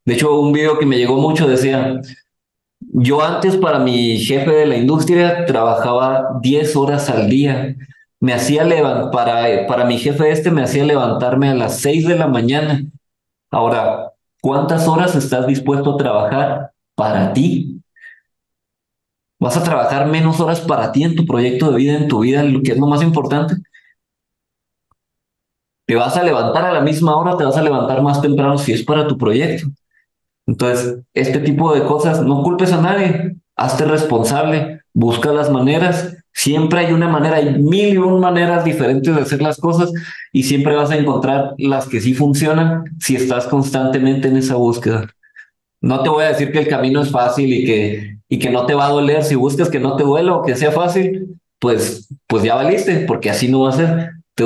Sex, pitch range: male, 130-155 Hz